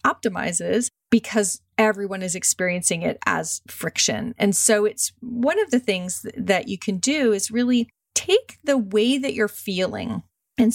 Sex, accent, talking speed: female, American, 155 wpm